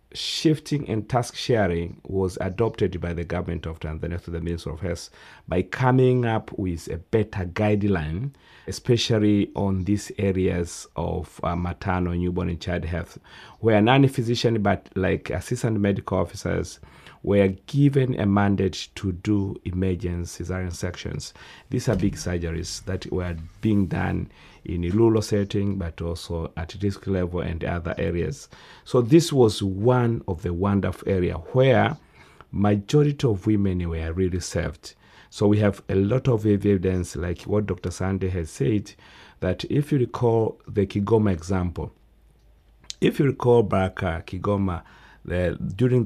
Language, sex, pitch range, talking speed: English, male, 90-105 Hz, 145 wpm